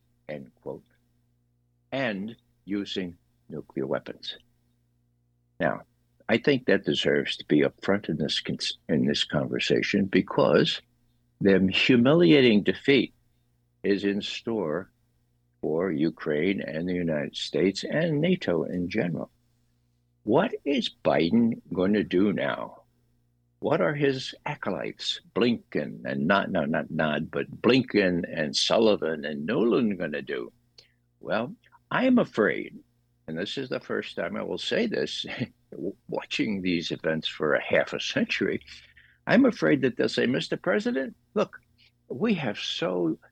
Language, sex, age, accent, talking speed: English, male, 60-79, American, 130 wpm